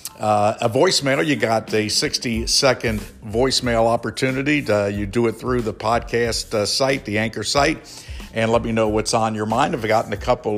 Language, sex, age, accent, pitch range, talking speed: English, male, 60-79, American, 105-130 Hz, 195 wpm